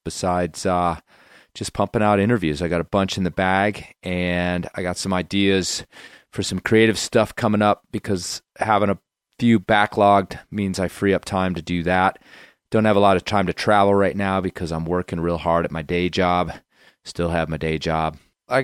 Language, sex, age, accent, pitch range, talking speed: English, male, 30-49, American, 85-105 Hz, 200 wpm